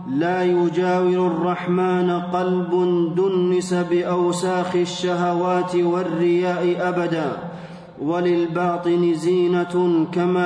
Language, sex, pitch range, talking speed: Arabic, male, 175-180 Hz, 70 wpm